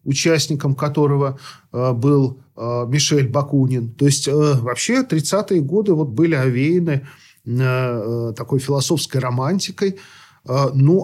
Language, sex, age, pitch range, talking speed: Russian, male, 40-59, 130-155 Hz, 90 wpm